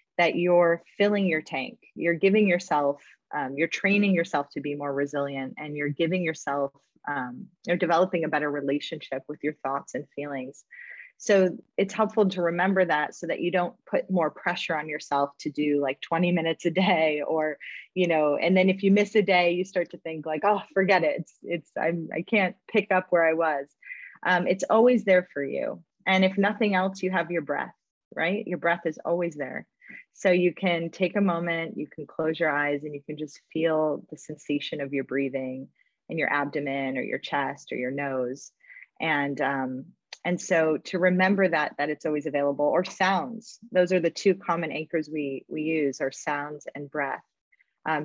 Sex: female